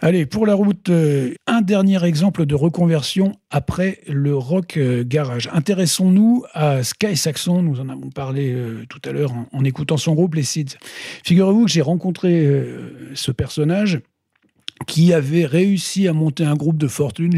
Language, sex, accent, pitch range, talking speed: French, male, French, 145-185 Hz, 155 wpm